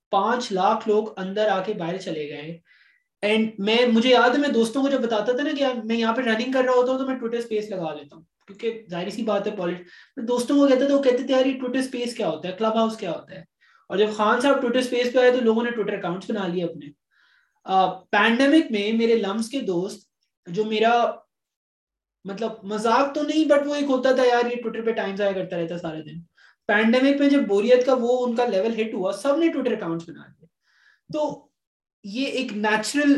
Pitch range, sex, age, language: 185-245 Hz, male, 20-39, Urdu